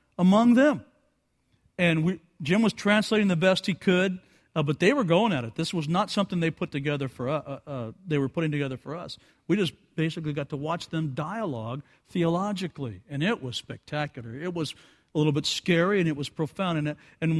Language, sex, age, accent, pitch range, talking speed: English, male, 50-69, American, 130-165 Hz, 210 wpm